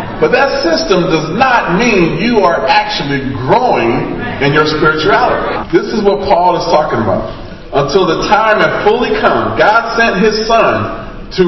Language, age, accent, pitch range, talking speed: English, 40-59, American, 150-215 Hz, 160 wpm